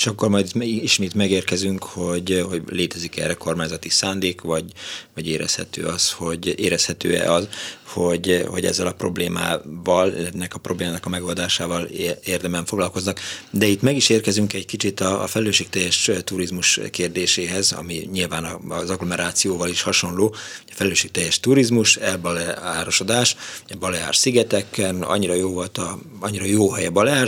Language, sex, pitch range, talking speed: Hungarian, male, 85-105 Hz, 140 wpm